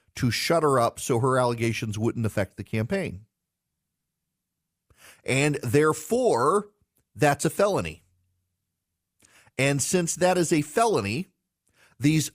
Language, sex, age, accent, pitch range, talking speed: English, male, 40-59, American, 100-145 Hz, 110 wpm